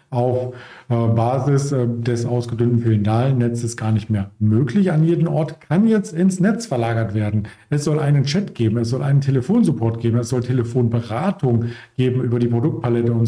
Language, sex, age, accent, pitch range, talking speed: German, male, 50-69, German, 115-145 Hz, 165 wpm